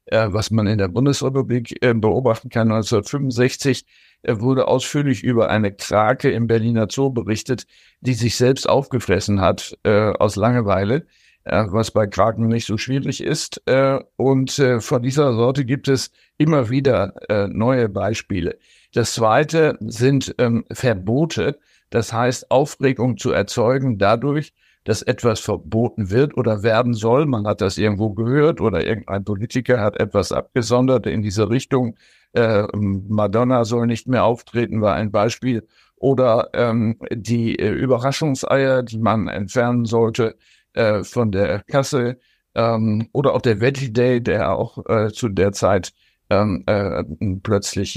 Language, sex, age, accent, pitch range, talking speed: German, male, 60-79, German, 110-135 Hz, 145 wpm